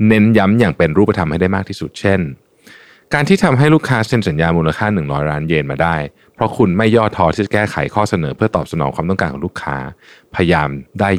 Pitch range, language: 80-110 Hz, Thai